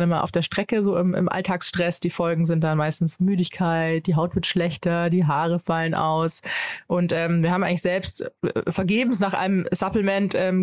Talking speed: 185 wpm